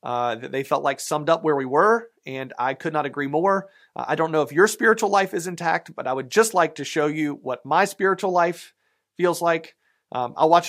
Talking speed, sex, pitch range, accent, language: 235 wpm, male, 150-195 Hz, American, English